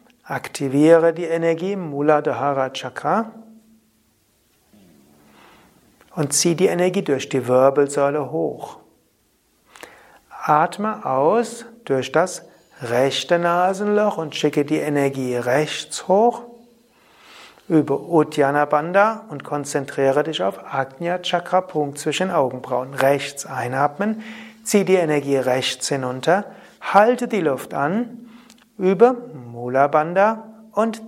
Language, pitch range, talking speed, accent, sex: German, 140-200 Hz, 100 wpm, German, male